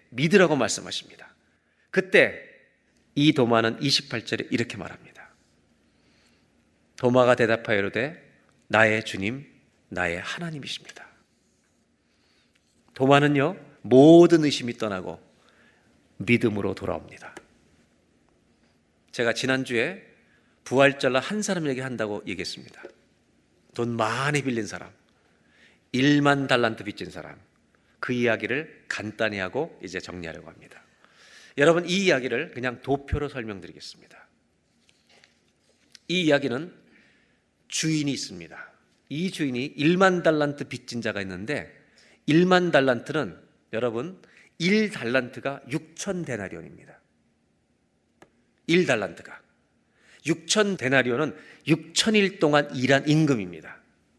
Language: Korean